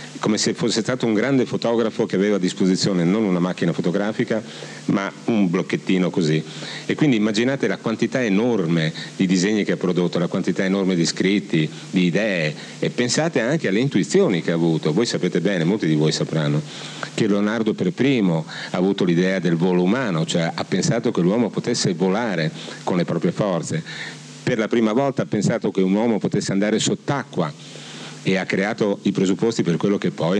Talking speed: 185 wpm